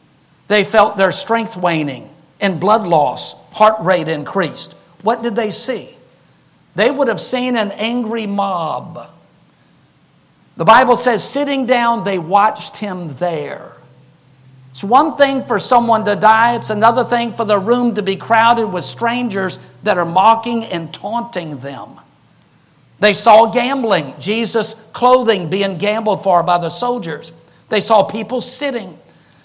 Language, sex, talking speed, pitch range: English, male, 145 wpm, 190-235 Hz